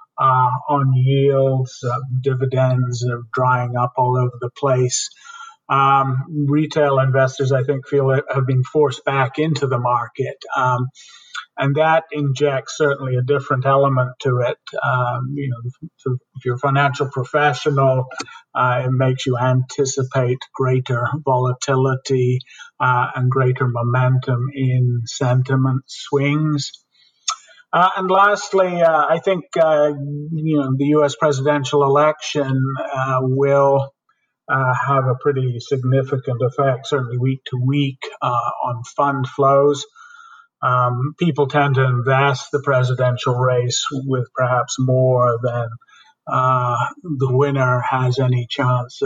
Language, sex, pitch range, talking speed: English, male, 125-145 Hz, 130 wpm